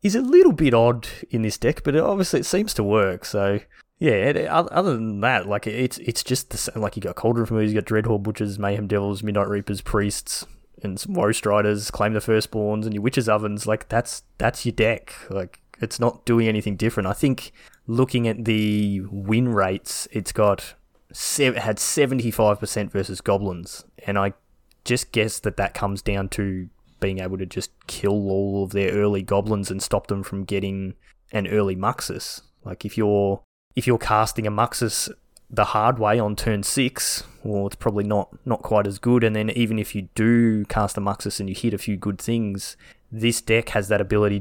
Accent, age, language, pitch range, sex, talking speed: Australian, 20-39, English, 100-115 Hz, male, 200 wpm